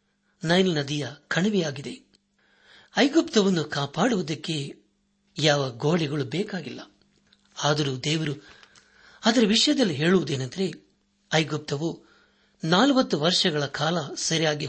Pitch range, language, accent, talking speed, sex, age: 150-205 Hz, Kannada, native, 75 wpm, male, 60-79